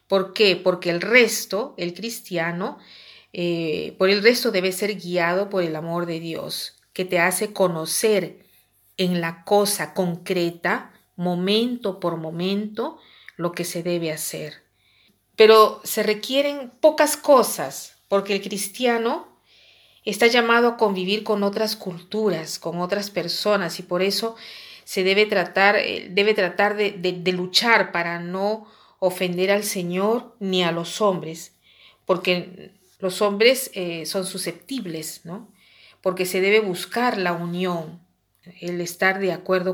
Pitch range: 175-215 Hz